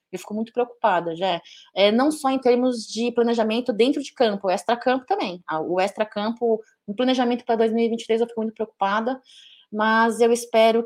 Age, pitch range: 20-39, 195-235 Hz